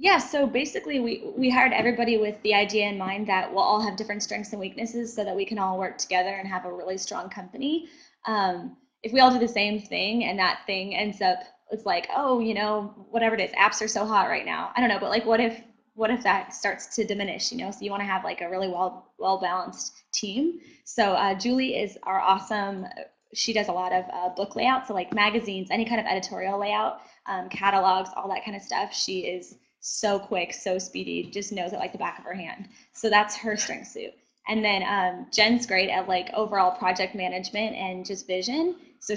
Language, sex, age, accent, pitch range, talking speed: English, female, 10-29, American, 190-230 Hz, 230 wpm